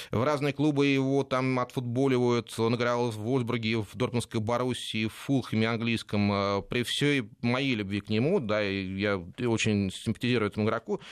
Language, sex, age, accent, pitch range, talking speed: Russian, male, 20-39, native, 110-135 Hz, 150 wpm